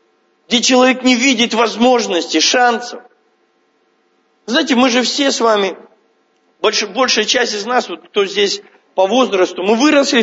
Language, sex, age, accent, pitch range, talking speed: Russian, male, 40-59, native, 200-265 Hz, 140 wpm